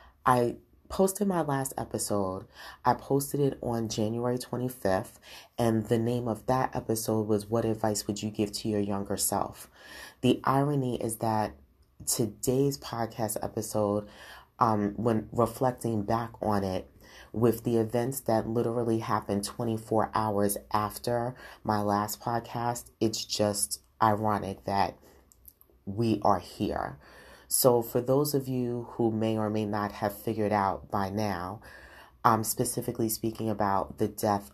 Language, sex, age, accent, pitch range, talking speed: English, female, 30-49, American, 100-115 Hz, 140 wpm